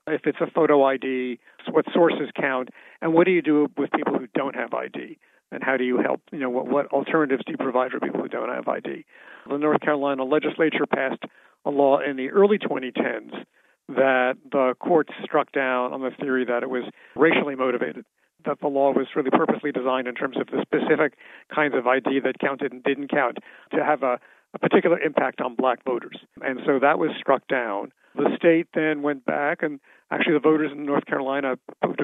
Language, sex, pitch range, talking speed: English, male, 130-155 Hz, 205 wpm